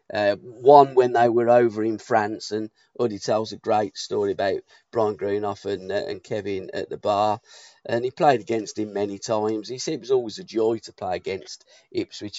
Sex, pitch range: male, 105-125 Hz